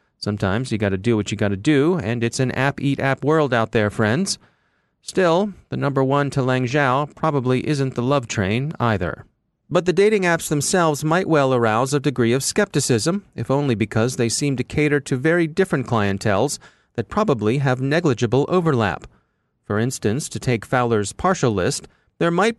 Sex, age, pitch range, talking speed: male, 40-59, 110-150 Hz, 180 wpm